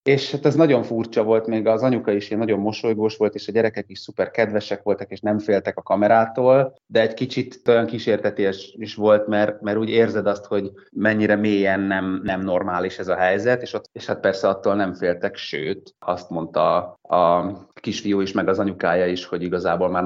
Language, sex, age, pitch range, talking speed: Hungarian, male, 30-49, 95-115 Hz, 205 wpm